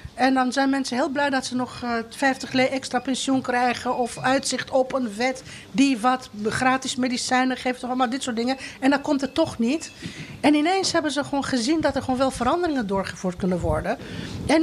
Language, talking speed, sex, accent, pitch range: Dutch, 205 wpm, female, Dutch, 220-270 Hz